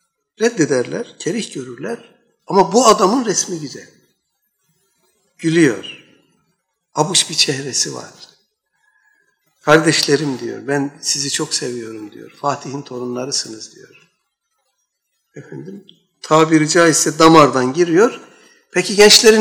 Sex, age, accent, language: male, 60-79, native, Turkish